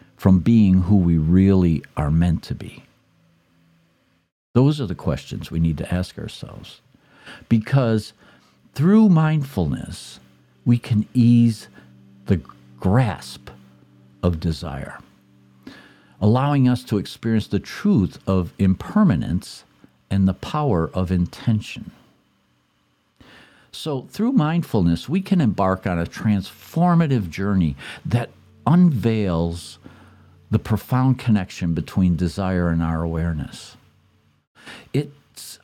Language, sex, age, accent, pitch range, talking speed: English, male, 50-69, American, 85-120 Hz, 105 wpm